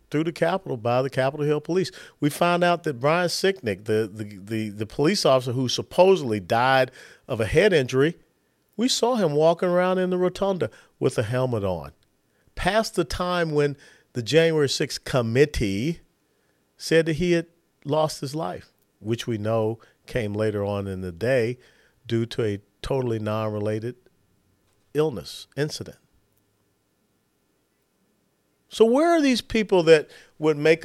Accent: American